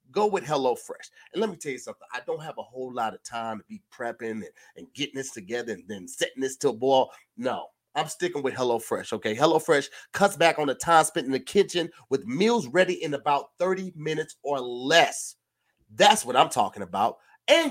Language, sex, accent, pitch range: English, male, American, 140-220 Hz